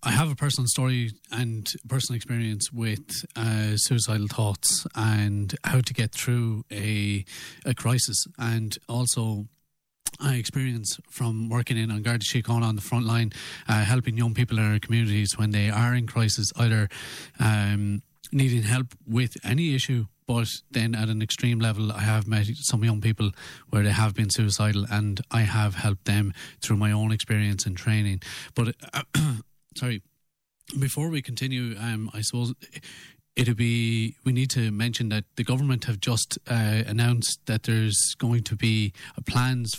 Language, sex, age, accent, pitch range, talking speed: English, male, 30-49, Irish, 110-130 Hz, 165 wpm